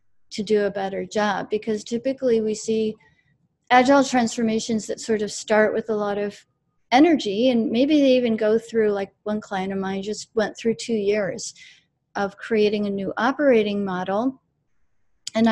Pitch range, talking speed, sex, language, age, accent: 200-250 Hz, 165 wpm, female, English, 30-49, American